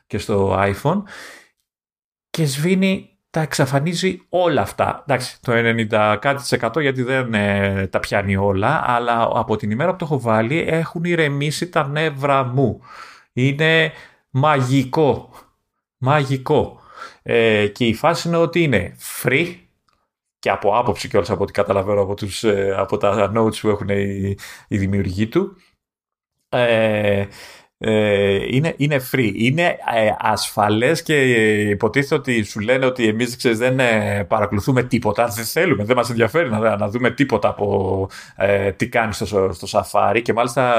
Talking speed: 135 wpm